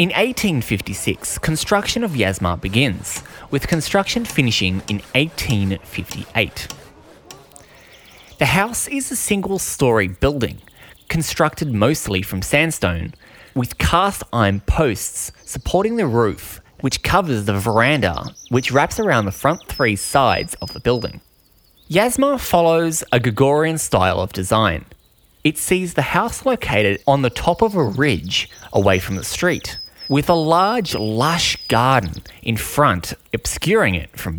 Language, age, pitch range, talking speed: English, 20-39, 100-155 Hz, 125 wpm